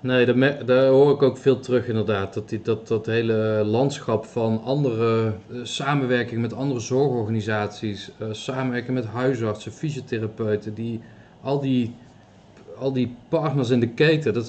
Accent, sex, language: Dutch, male, Dutch